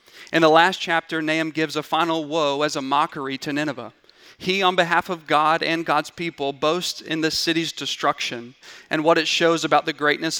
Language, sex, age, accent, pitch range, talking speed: English, male, 40-59, American, 140-165 Hz, 195 wpm